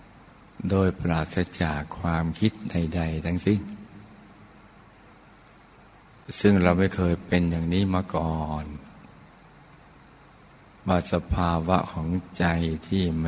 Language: Thai